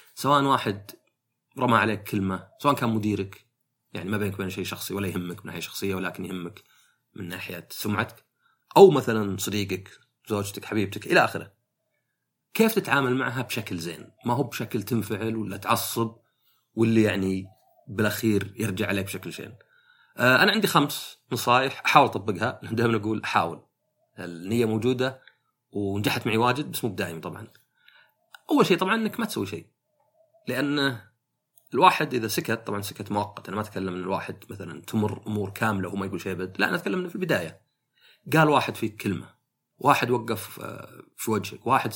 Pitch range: 100-145 Hz